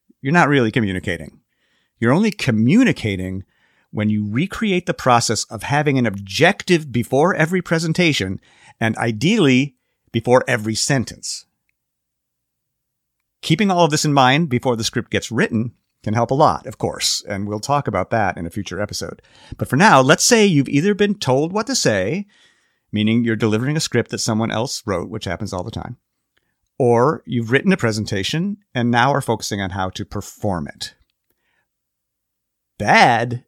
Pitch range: 105-140 Hz